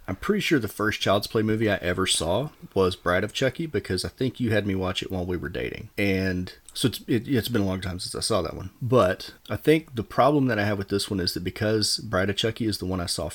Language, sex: English, male